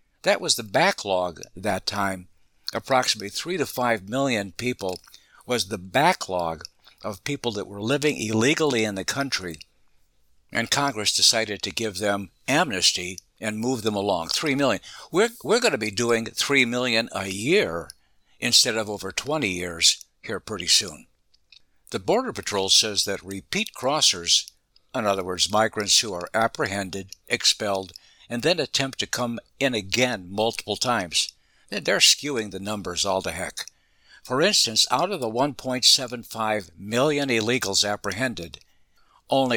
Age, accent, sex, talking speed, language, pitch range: 60-79, American, male, 145 wpm, English, 95-125 Hz